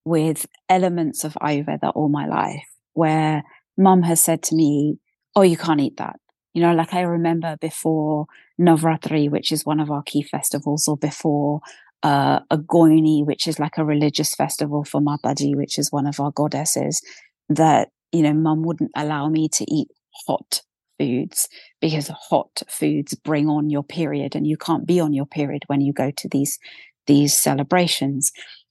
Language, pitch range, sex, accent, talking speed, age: English, 145-170 Hz, female, British, 170 wpm, 30-49